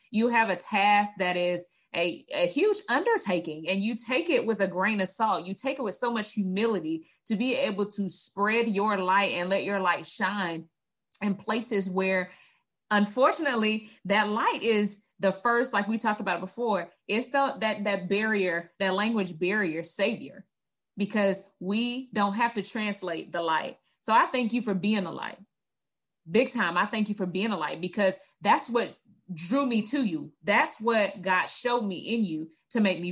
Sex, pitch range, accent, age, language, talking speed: female, 180-225 Hz, American, 30-49, English, 190 wpm